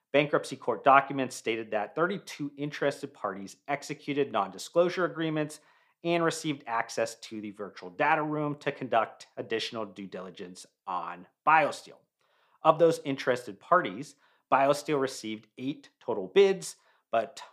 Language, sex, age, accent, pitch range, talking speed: English, male, 40-59, American, 115-150 Hz, 125 wpm